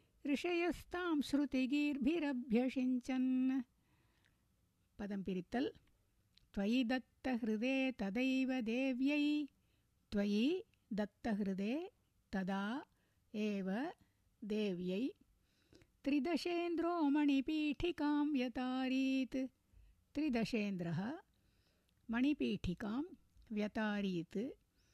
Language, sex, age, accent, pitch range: Tamil, female, 60-79, native, 195-270 Hz